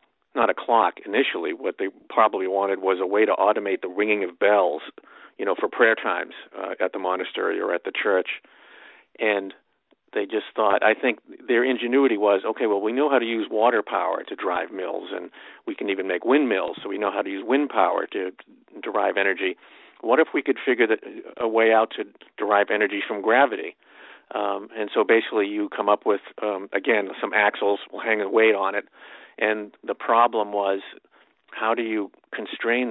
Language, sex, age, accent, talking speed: English, male, 50-69, American, 195 wpm